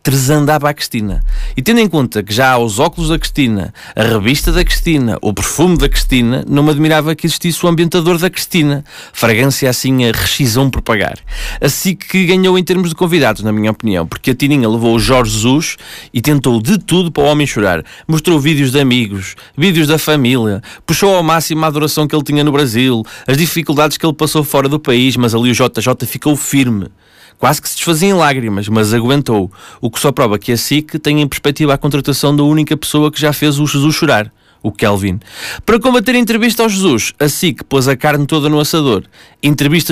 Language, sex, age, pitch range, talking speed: Portuguese, male, 20-39, 120-155 Hz, 210 wpm